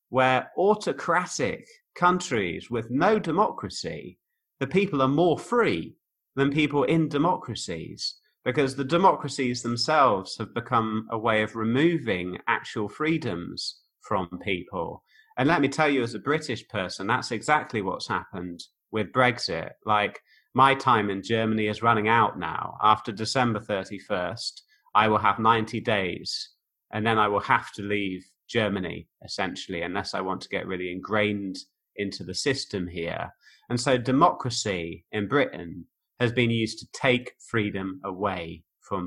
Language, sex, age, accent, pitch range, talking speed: English, male, 30-49, British, 100-130 Hz, 145 wpm